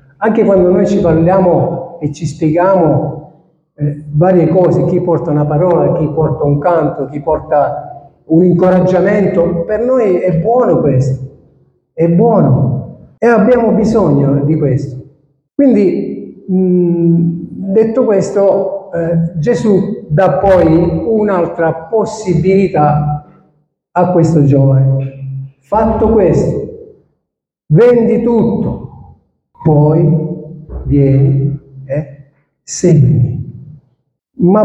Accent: native